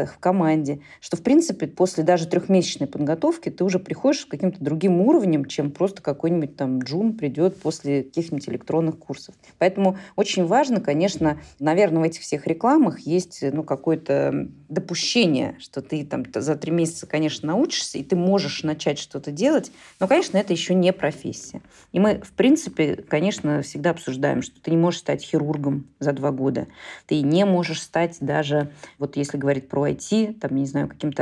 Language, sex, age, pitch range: Russian, female, 30-49, 145-185 Hz